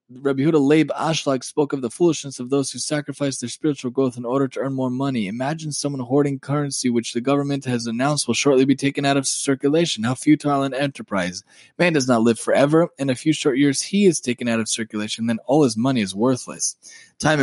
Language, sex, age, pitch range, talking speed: English, male, 20-39, 125-150 Hz, 220 wpm